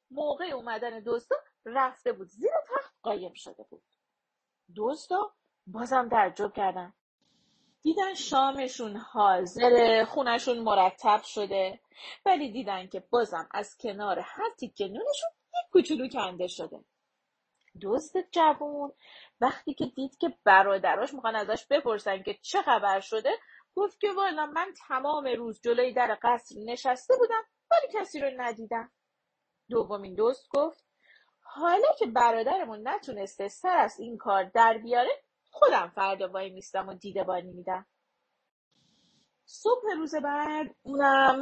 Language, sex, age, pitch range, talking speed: Persian, female, 30-49, 210-310 Hz, 125 wpm